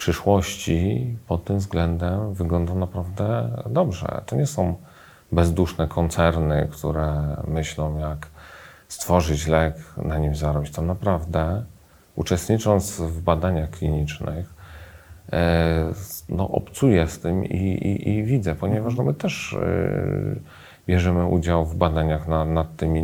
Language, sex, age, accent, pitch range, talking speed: Polish, male, 40-59, native, 80-105 Hz, 120 wpm